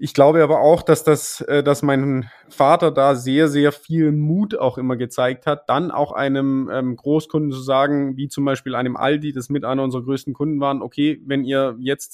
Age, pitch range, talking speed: 20-39, 135-155 Hz, 210 wpm